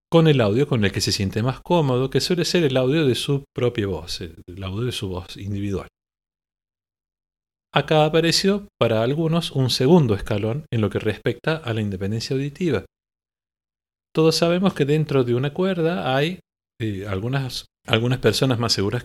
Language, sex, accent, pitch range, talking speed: Spanish, male, Argentinian, 100-155 Hz, 170 wpm